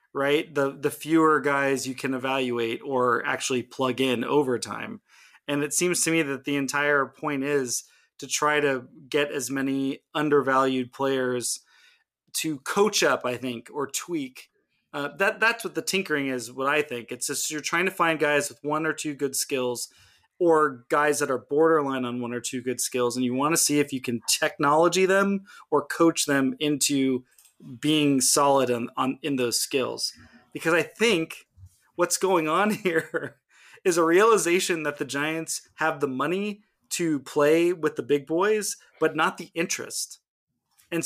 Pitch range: 135-165 Hz